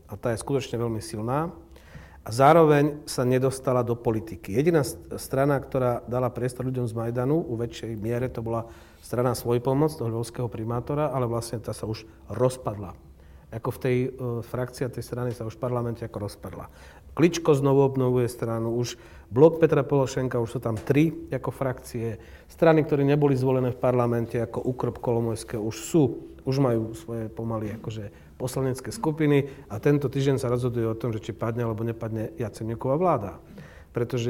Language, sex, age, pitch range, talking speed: Slovak, male, 40-59, 115-135 Hz, 170 wpm